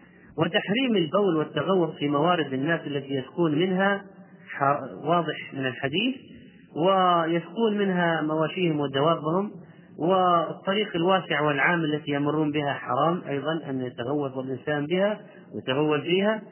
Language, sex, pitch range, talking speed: Arabic, male, 145-190 Hz, 110 wpm